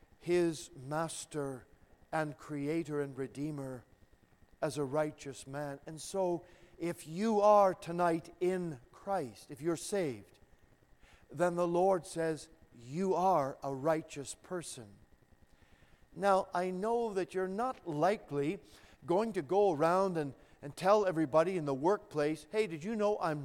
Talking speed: 135 wpm